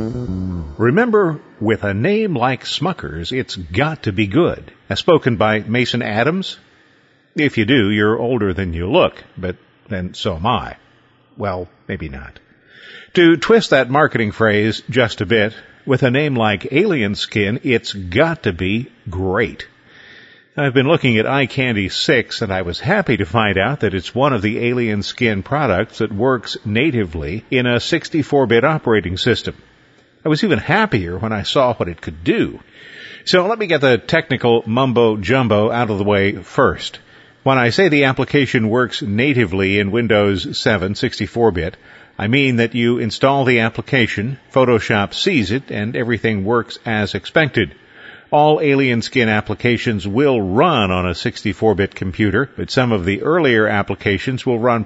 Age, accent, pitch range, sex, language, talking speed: 50-69, American, 100-130 Hz, male, English, 160 wpm